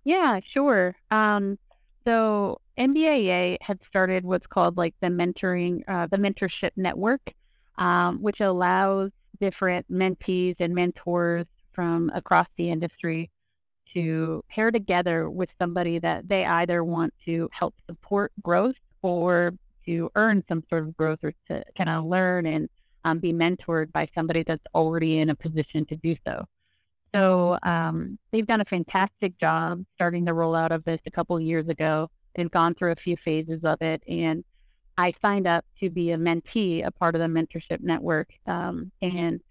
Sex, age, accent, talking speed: female, 30-49, American, 160 wpm